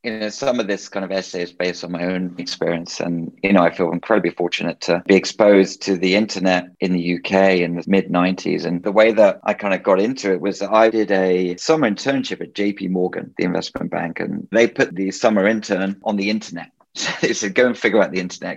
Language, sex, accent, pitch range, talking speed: English, male, British, 90-110 Hz, 235 wpm